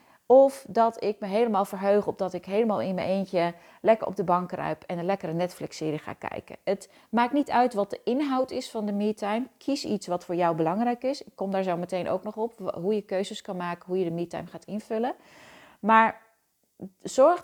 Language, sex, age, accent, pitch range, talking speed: Dutch, female, 30-49, Dutch, 185-235 Hz, 215 wpm